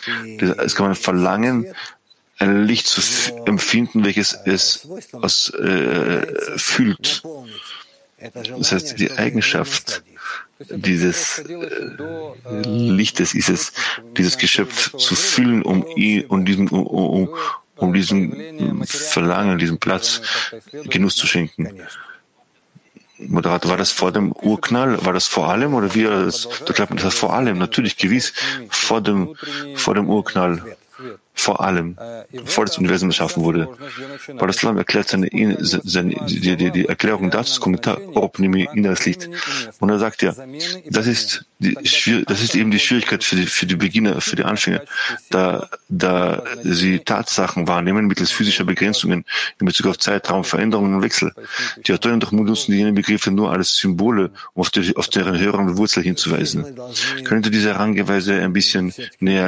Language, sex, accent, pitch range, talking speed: English, male, German, 90-115 Hz, 135 wpm